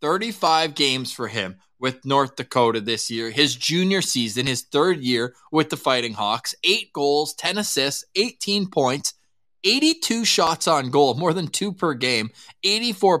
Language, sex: English, male